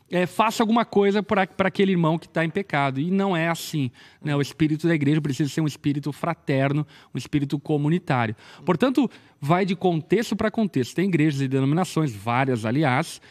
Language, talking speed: Portuguese, 175 wpm